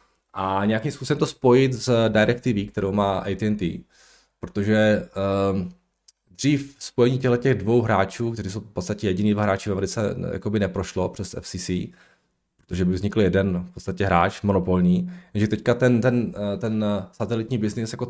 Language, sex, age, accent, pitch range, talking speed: Czech, male, 20-39, native, 95-120 Hz, 155 wpm